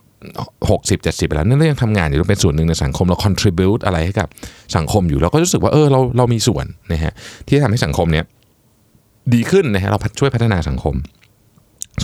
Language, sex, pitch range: Thai, male, 90-125 Hz